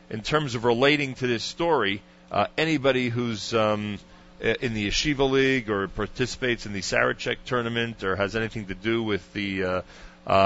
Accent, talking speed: American, 170 wpm